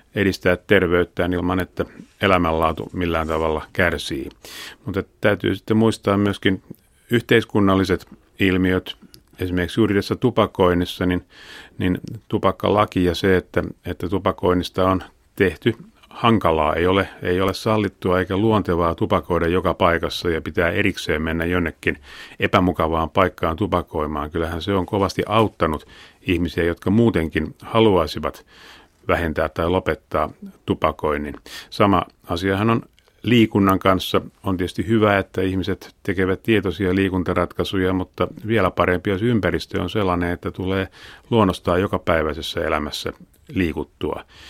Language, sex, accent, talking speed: Finnish, male, native, 115 wpm